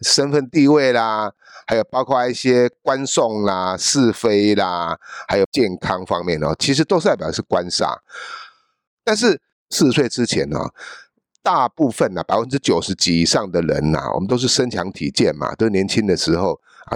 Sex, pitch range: male, 105-160 Hz